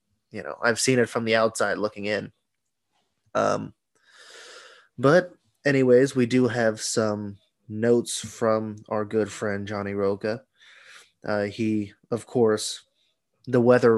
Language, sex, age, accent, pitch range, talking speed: English, male, 20-39, American, 105-120 Hz, 130 wpm